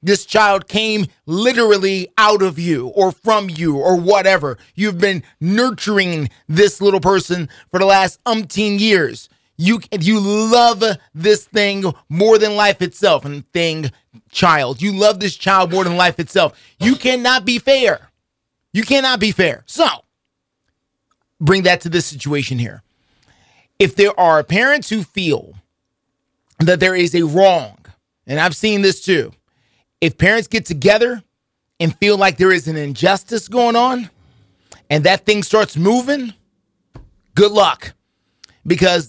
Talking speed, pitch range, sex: 145 wpm, 170-215 Hz, male